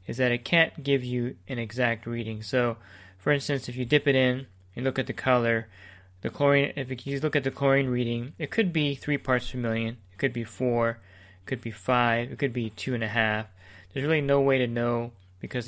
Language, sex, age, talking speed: English, male, 20-39, 220 wpm